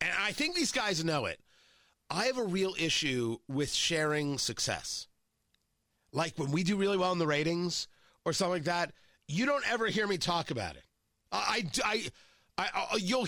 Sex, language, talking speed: male, English, 185 wpm